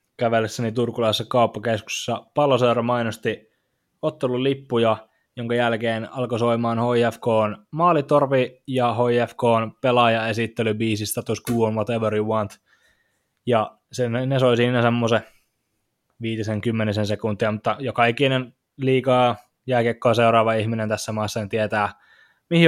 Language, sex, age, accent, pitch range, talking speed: Finnish, male, 20-39, native, 110-125 Hz, 115 wpm